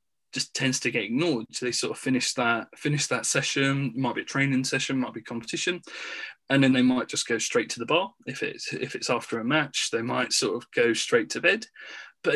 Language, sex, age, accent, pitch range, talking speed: English, male, 20-39, British, 120-145 Hz, 235 wpm